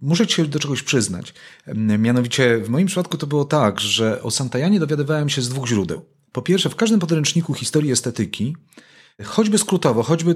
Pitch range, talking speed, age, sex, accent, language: 115-155 Hz, 180 wpm, 30-49, male, native, Polish